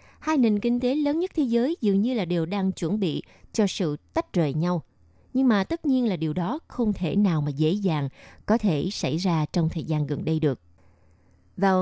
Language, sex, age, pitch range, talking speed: Vietnamese, female, 20-39, 160-230 Hz, 225 wpm